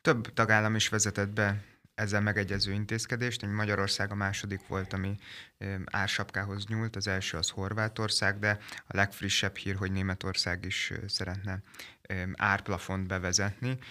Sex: male